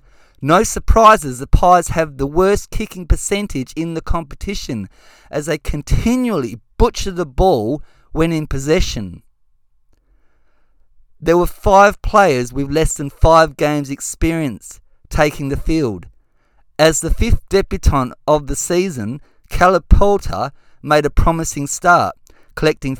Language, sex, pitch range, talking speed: English, male, 130-165 Hz, 125 wpm